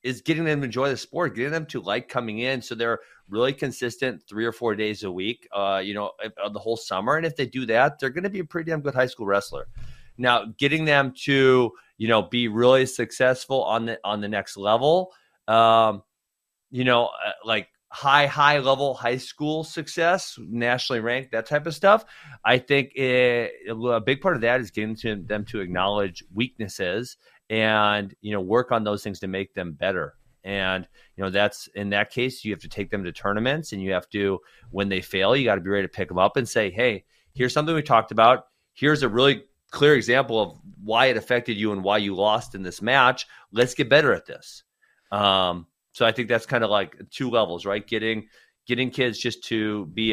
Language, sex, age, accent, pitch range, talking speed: English, male, 30-49, American, 105-130 Hz, 215 wpm